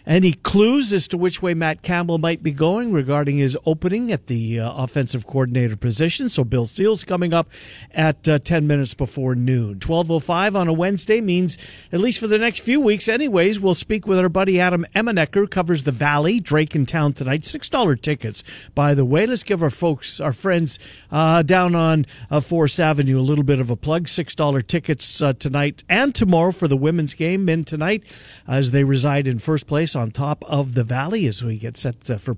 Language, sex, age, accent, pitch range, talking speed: English, male, 50-69, American, 130-170 Hz, 205 wpm